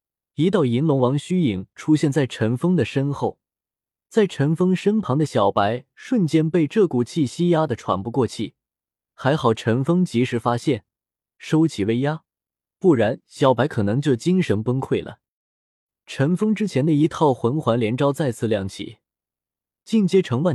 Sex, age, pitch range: male, 20-39, 115-165 Hz